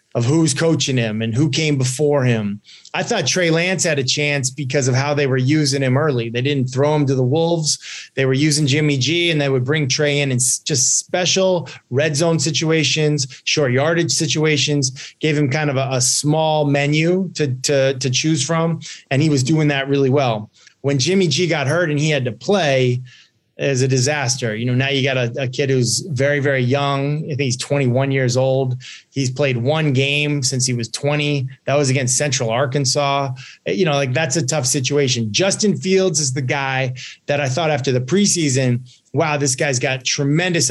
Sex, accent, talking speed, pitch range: male, American, 205 wpm, 130-155 Hz